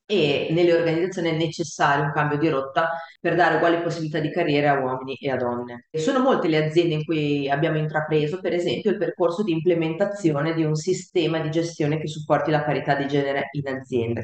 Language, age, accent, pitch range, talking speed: Italian, 30-49, native, 150-185 Hz, 200 wpm